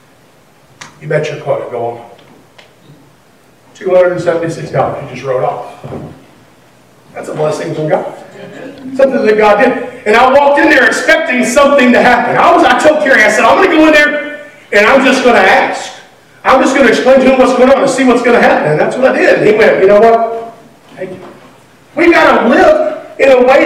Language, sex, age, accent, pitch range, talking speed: English, male, 40-59, American, 190-285 Hz, 210 wpm